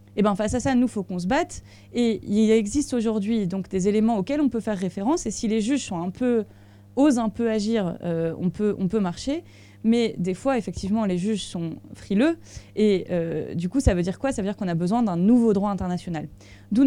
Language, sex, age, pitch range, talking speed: French, female, 20-39, 175-220 Hz, 240 wpm